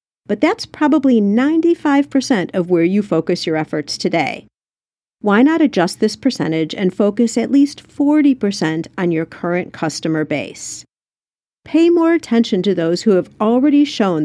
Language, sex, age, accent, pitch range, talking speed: English, female, 50-69, American, 185-295 Hz, 145 wpm